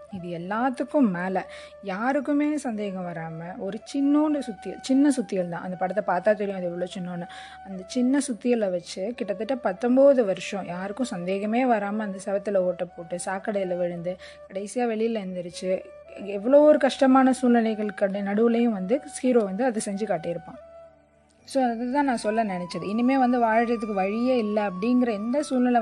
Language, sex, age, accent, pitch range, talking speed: Tamil, female, 20-39, native, 195-265 Hz, 150 wpm